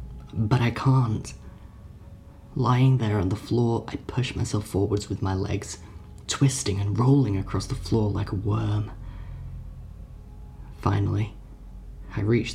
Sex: male